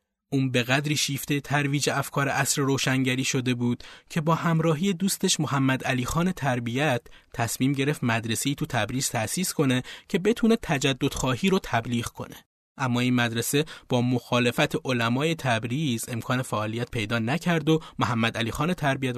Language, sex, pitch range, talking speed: Persian, male, 120-150 Hz, 145 wpm